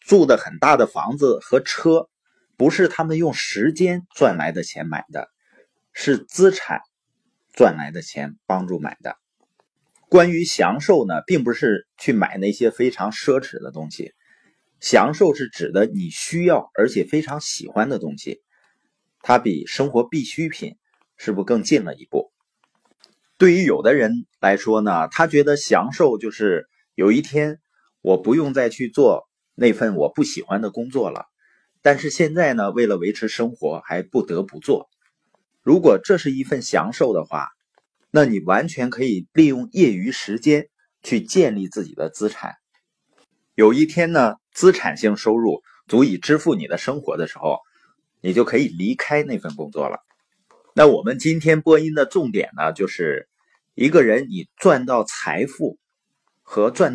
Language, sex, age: Chinese, male, 30-49